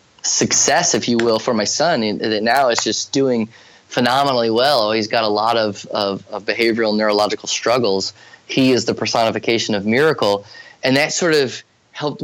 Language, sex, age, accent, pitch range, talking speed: English, male, 20-39, American, 105-125 Hz, 170 wpm